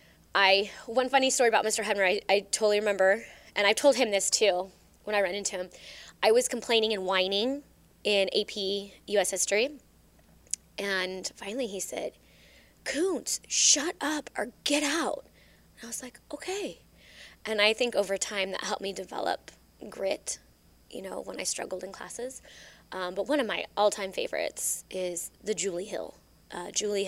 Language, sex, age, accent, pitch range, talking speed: English, female, 20-39, American, 185-220 Hz, 165 wpm